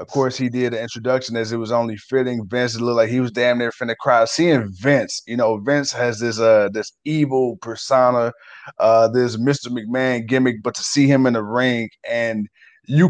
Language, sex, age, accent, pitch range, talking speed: English, male, 20-39, American, 110-135 Hz, 205 wpm